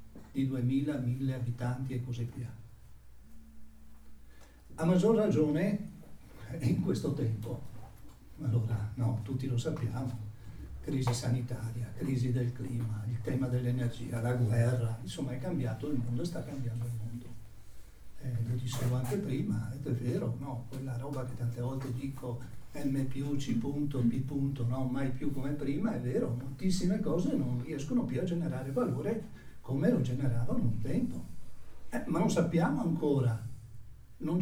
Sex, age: male, 60-79